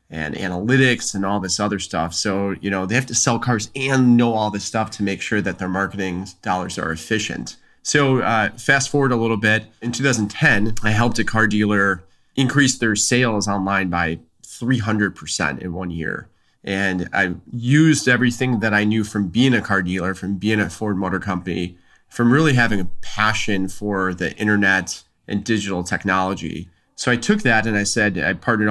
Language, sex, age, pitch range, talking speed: English, male, 30-49, 95-120 Hz, 190 wpm